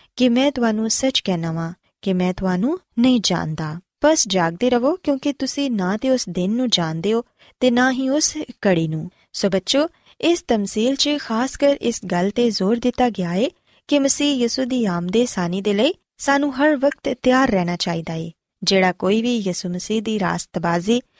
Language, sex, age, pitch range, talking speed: Punjabi, female, 20-39, 185-265 Hz, 160 wpm